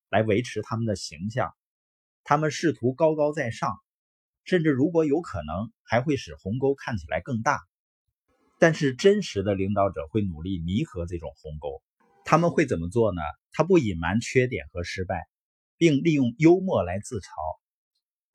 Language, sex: Chinese, male